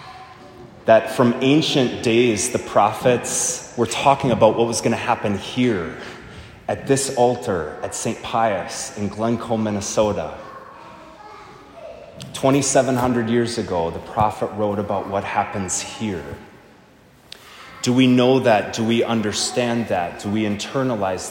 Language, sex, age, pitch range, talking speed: English, male, 30-49, 100-125 Hz, 125 wpm